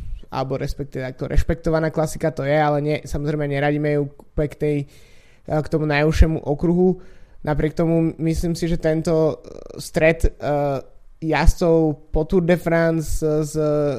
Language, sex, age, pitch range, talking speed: Slovak, male, 20-39, 145-160 Hz, 130 wpm